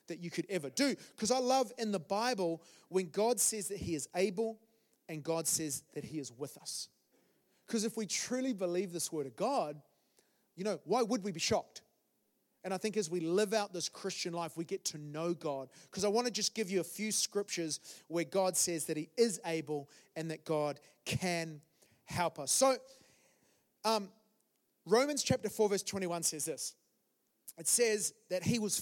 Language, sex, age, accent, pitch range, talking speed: English, male, 30-49, Australian, 165-230 Hz, 195 wpm